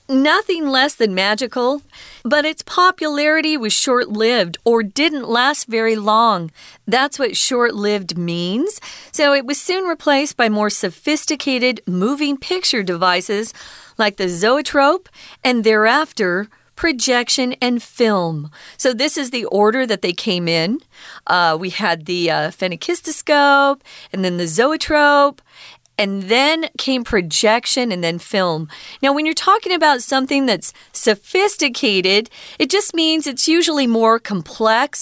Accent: American